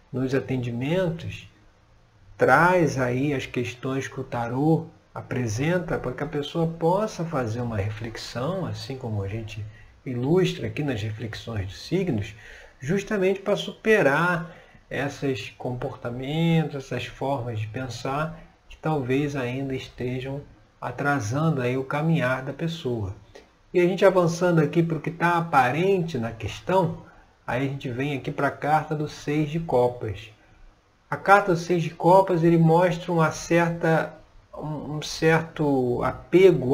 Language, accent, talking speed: Portuguese, Brazilian, 135 wpm